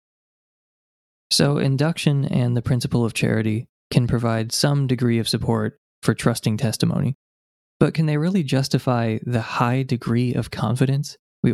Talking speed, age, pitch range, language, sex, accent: 140 wpm, 20-39, 110-130 Hz, English, male, American